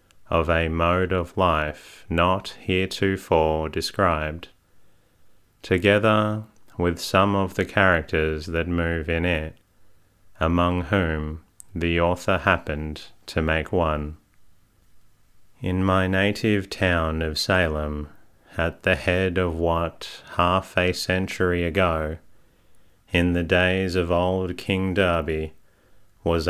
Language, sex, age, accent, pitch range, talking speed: English, male, 30-49, Australian, 85-95 Hz, 110 wpm